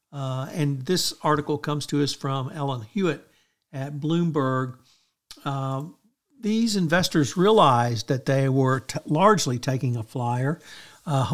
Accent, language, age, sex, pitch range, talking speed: American, English, 60-79, male, 135-165 Hz, 130 wpm